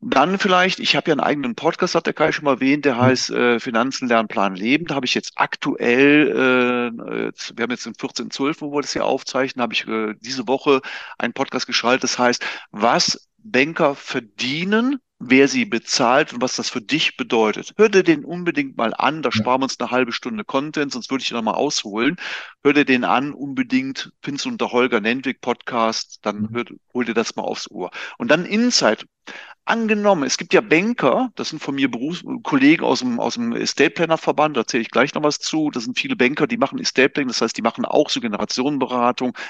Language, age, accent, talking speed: German, 40-59, German, 210 wpm